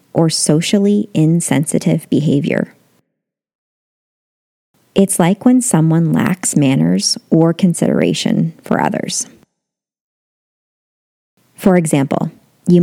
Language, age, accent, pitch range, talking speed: English, 20-39, American, 160-215 Hz, 80 wpm